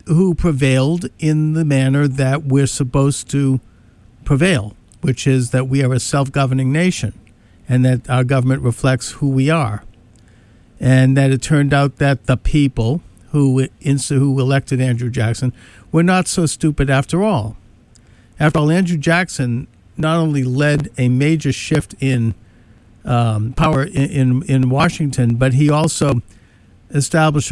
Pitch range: 120-145 Hz